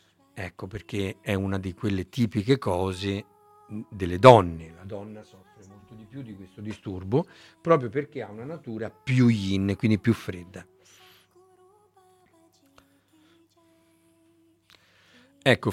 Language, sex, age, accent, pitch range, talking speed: Italian, male, 50-69, native, 100-140 Hz, 115 wpm